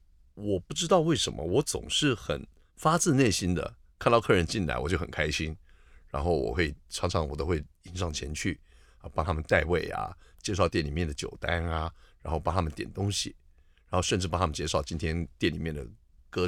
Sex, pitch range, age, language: male, 75-100 Hz, 50-69, Chinese